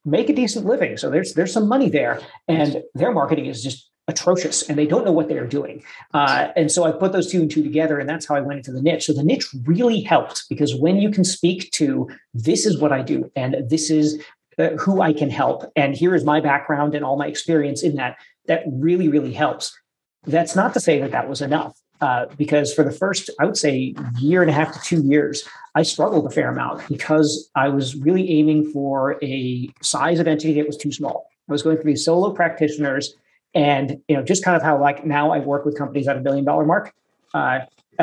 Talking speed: 235 wpm